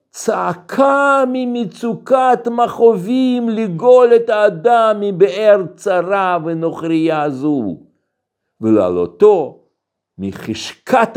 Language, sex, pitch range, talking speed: Hebrew, male, 130-185 Hz, 65 wpm